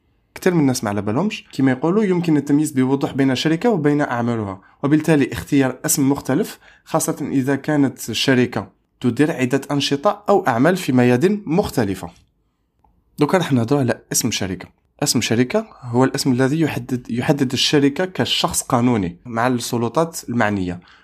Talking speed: 145 wpm